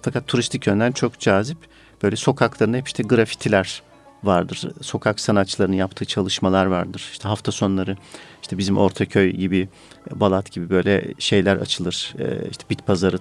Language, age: Turkish, 50-69